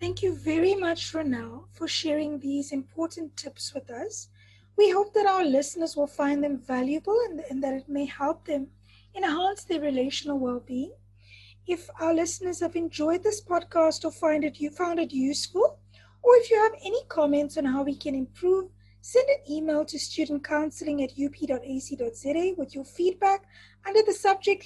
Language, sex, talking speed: English, female, 175 wpm